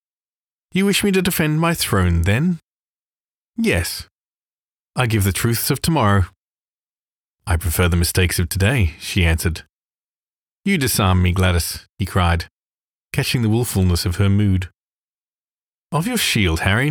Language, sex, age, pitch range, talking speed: English, male, 30-49, 90-135 Hz, 140 wpm